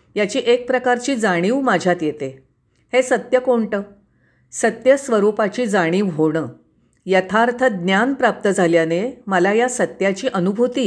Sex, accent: female, native